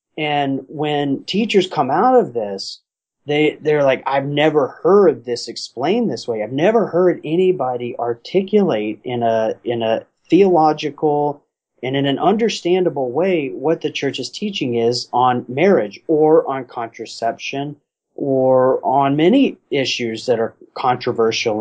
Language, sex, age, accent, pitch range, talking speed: English, male, 30-49, American, 125-170 Hz, 140 wpm